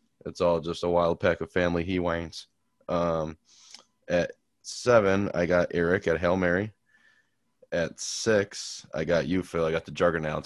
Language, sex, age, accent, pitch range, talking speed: English, male, 20-39, American, 80-90 Hz, 165 wpm